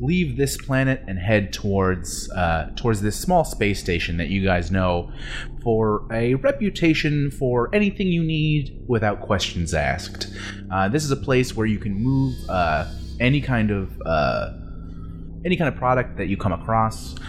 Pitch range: 90-115 Hz